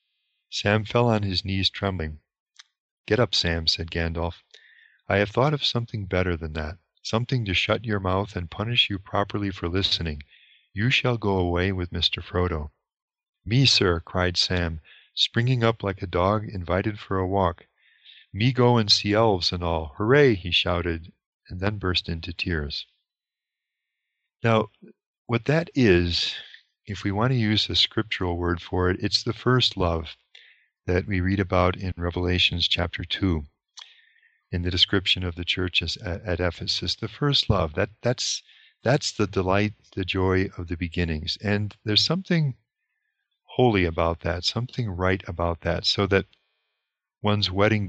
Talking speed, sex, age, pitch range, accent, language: 160 wpm, male, 40-59, 90-105 Hz, American, English